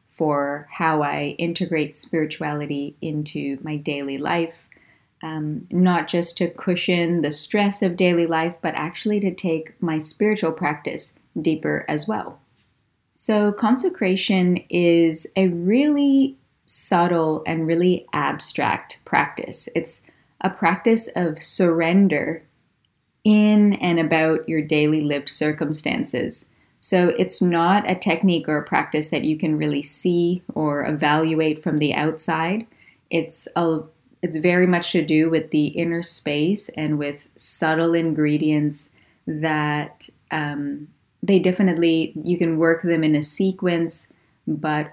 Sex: female